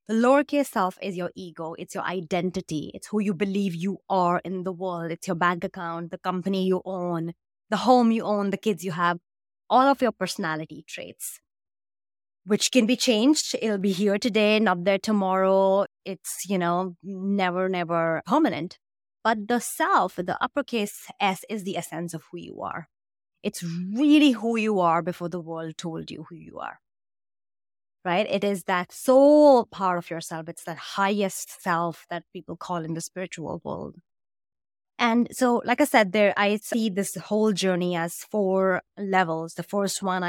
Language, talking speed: English, 175 wpm